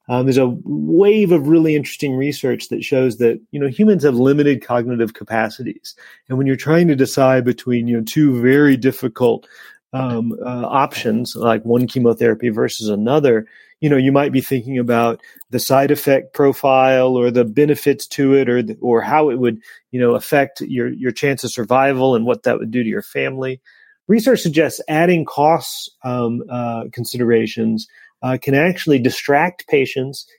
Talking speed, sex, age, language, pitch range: 170 wpm, male, 40-59, English, 120-150 Hz